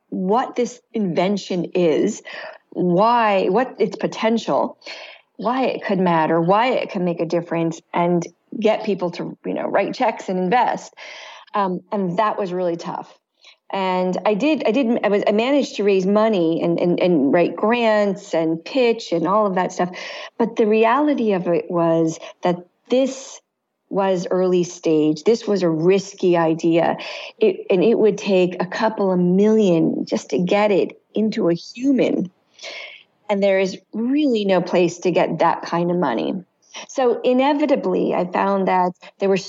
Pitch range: 175-215 Hz